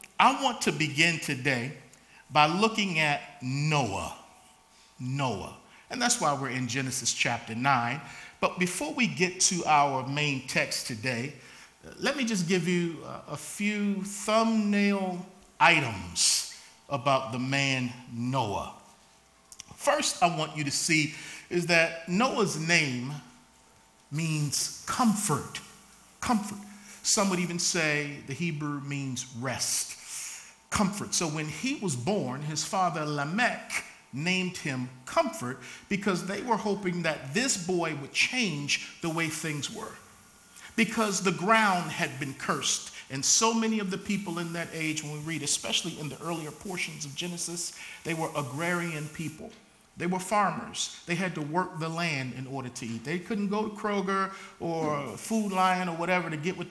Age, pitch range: 50-69, 140-195 Hz